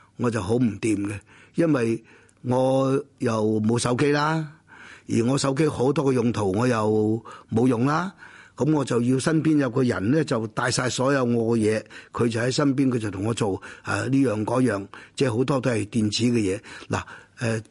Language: Chinese